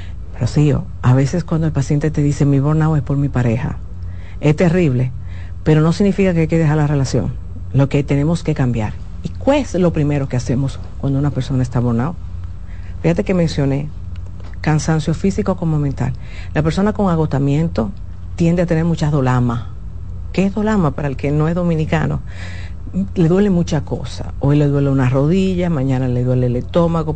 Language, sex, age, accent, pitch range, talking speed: Spanish, female, 50-69, American, 105-165 Hz, 180 wpm